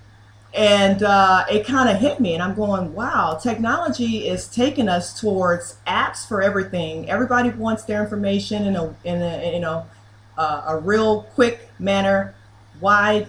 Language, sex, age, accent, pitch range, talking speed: English, female, 30-49, American, 155-205 Hz, 165 wpm